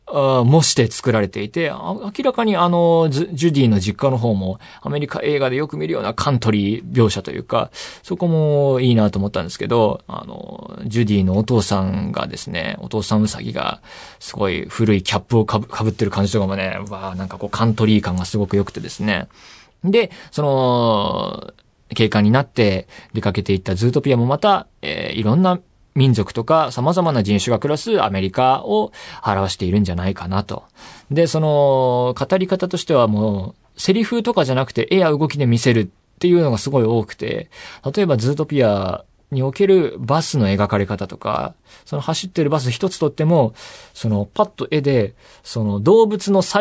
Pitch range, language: 105-170 Hz, Japanese